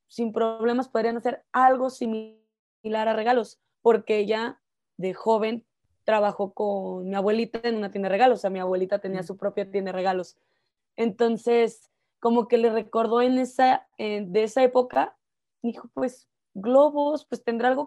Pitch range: 205-245 Hz